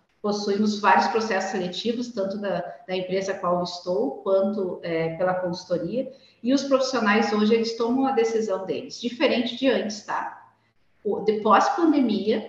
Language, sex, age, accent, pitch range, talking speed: Portuguese, female, 40-59, Brazilian, 200-250 Hz, 150 wpm